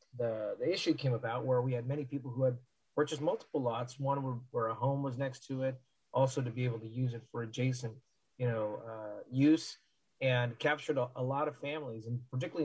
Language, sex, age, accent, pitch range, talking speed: English, male, 30-49, American, 120-140 Hz, 220 wpm